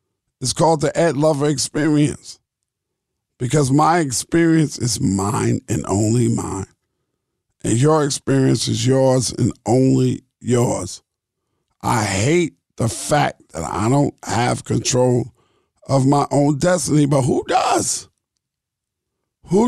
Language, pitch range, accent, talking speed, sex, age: English, 125-160 Hz, American, 120 wpm, male, 50-69